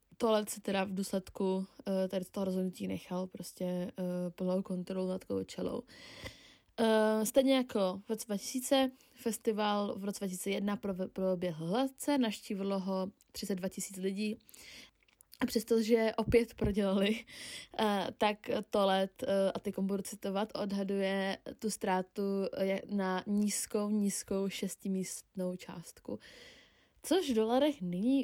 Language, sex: Czech, female